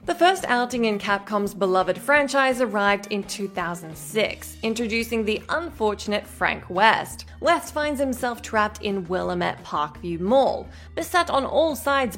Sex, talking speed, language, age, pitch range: female, 135 wpm, English, 20-39, 195-285 Hz